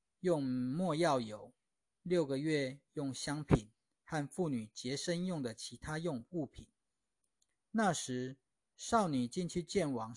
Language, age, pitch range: Chinese, 50-69, 125-165 Hz